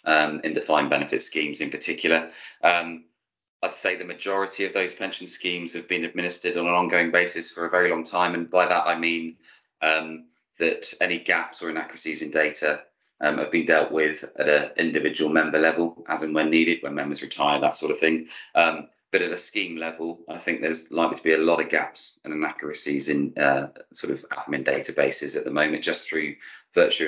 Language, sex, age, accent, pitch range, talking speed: English, male, 20-39, British, 80-90 Hz, 205 wpm